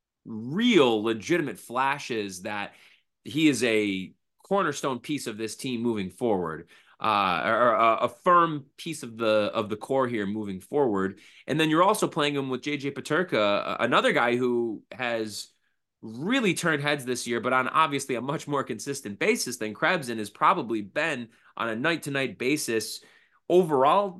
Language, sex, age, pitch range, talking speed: English, male, 20-39, 115-150 Hz, 165 wpm